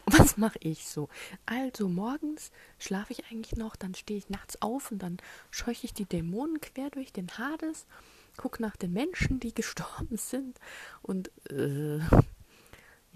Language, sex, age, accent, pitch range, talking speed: German, female, 30-49, German, 155-200 Hz, 155 wpm